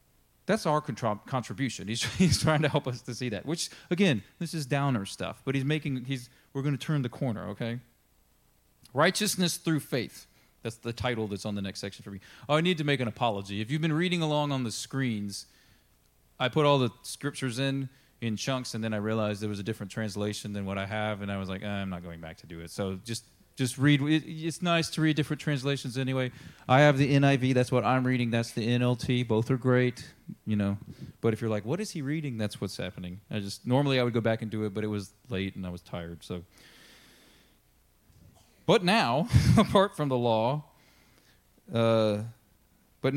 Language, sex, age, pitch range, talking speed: English, male, 30-49, 105-140 Hz, 215 wpm